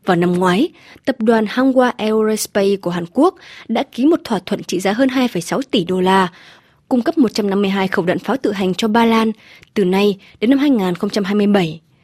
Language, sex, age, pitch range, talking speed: Vietnamese, female, 20-39, 190-240 Hz, 190 wpm